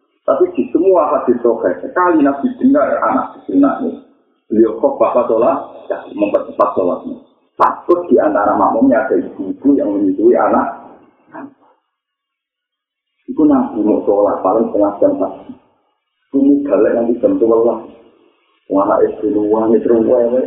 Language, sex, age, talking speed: Malay, male, 40-59, 125 wpm